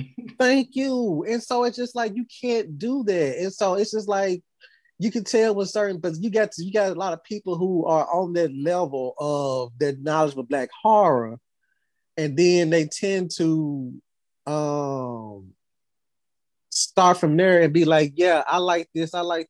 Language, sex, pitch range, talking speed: English, male, 135-185 Hz, 180 wpm